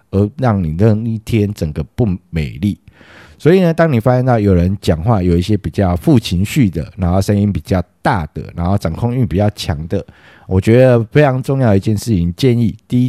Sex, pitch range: male, 90-115 Hz